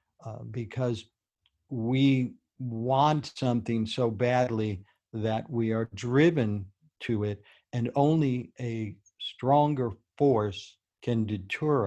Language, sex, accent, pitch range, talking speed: English, male, American, 105-125 Hz, 100 wpm